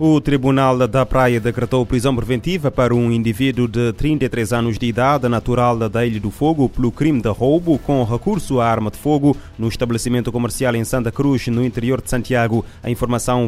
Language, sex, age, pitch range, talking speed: Portuguese, male, 20-39, 115-130 Hz, 185 wpm